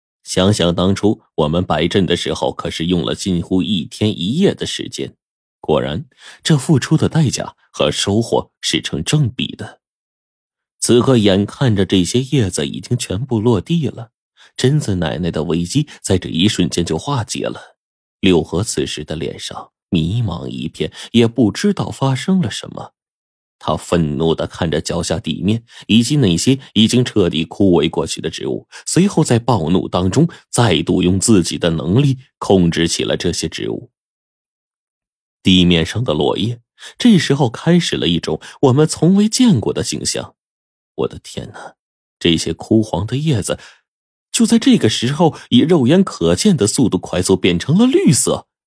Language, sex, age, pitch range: Chinese, male, 30-49, 90-140 Hz